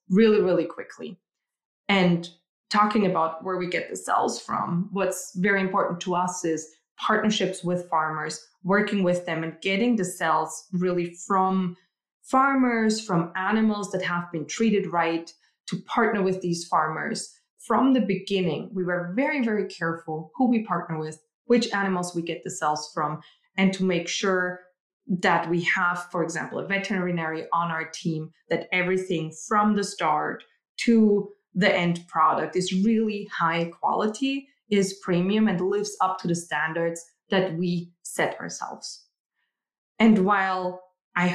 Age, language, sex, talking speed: 20-39, English, female, 150 wpm